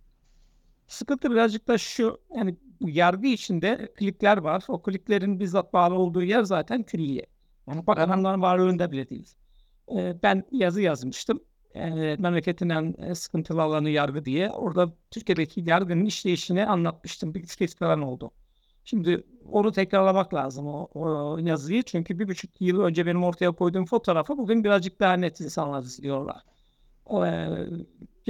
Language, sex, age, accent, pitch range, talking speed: Turkish, male, 60-79, native, 165-210 Hz, 140 wpm